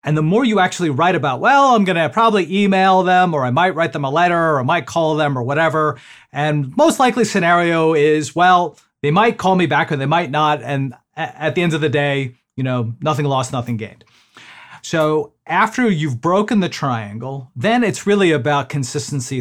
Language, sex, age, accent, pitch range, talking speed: English, male, 40-59, American, 135-175 Hz, 205 wpm